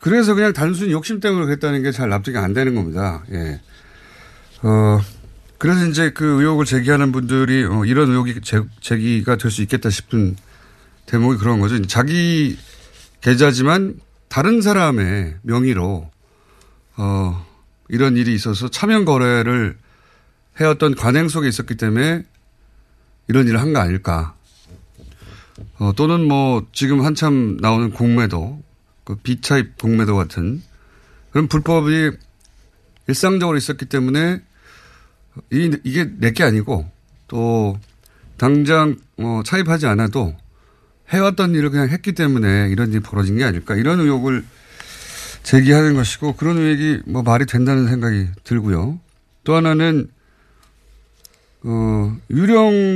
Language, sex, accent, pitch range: Korean, male, native, 105-150 Hz